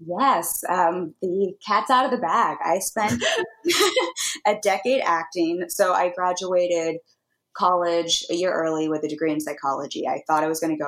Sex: female